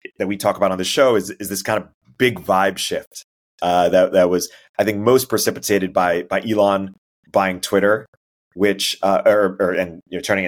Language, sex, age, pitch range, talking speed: English, male, 30-49, 90-105 Hz, 205 wpm